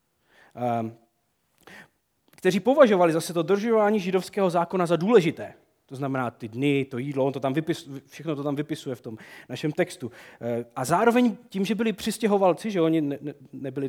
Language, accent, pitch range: Czech, native, 140-205 Hz